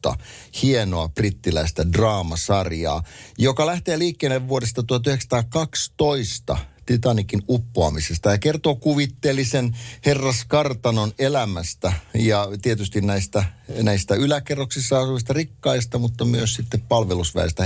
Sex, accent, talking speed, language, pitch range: male, native, 90 wpm, Finnish, 85-120 Hz